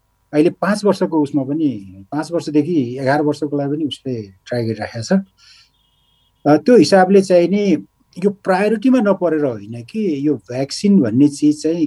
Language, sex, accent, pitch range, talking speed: English, male, Indian, 125-170 Hz, 65 wpm